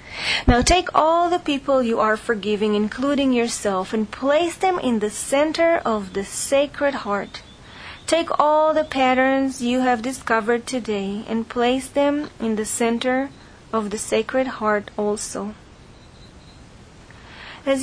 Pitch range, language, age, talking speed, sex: 215-285 Hz, English, 30-49, 135 wpm, female